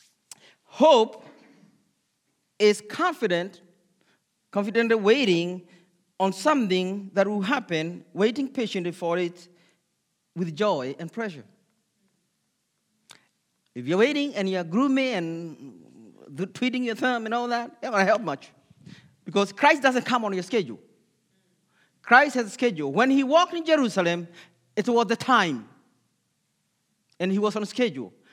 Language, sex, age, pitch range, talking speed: English, male, 40-59, 190-270 Hz, 130 wpm